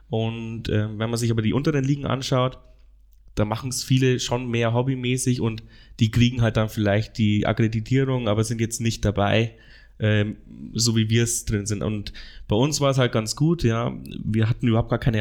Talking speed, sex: 200 wpm, male